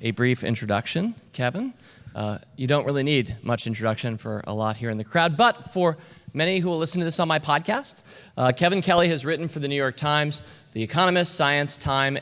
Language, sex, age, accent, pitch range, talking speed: English, male, 40-59, American, 130-175 Hz, 210 wpm